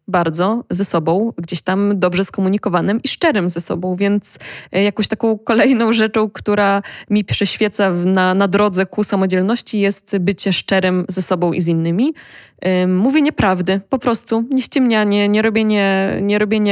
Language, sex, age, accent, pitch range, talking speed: Polish, female, 20-39, native, 190-230 Hz, 145 wpm